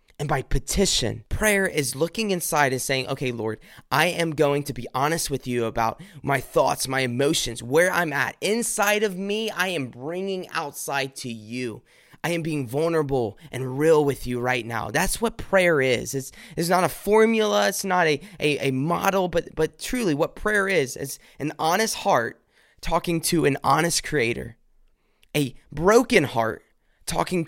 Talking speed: 175 wpm